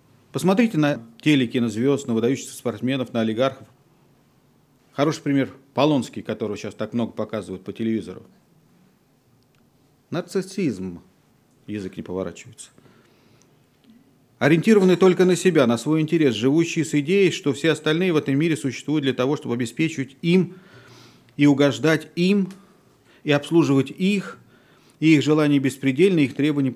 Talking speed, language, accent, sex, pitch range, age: 130 wpm, Russian, native, male, 125-165 Hz, 40-59